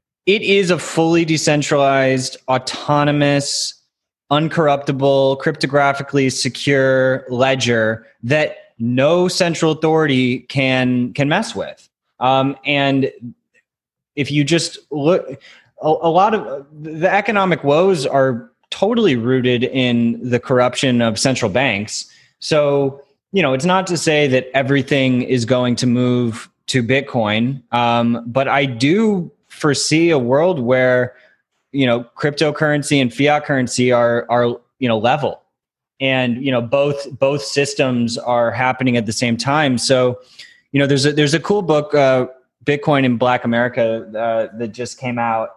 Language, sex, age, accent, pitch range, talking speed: English, male, 20-39, American, 120-150 Hz, 140 wpm